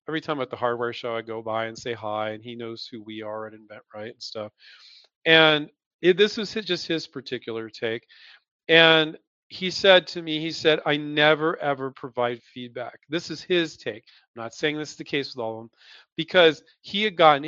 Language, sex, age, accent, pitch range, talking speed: English, male, 40-59, American, 125-165 Hz, 215 wpm